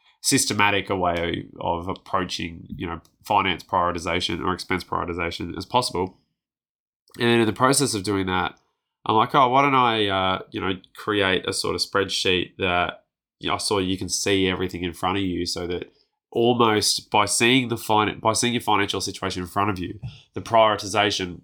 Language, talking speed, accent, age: English, 190 wpm, Australian, 20-39